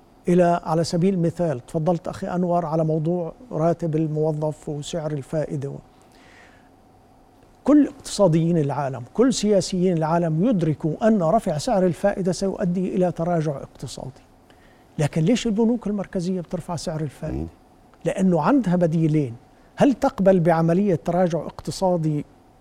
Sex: male